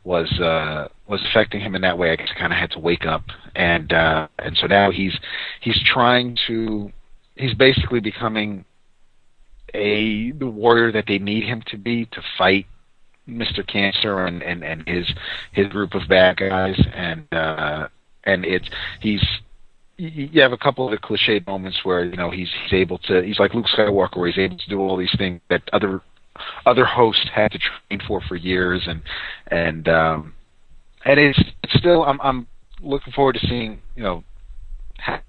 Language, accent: English, American